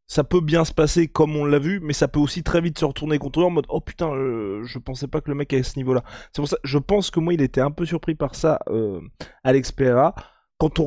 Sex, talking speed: male, 300 wpm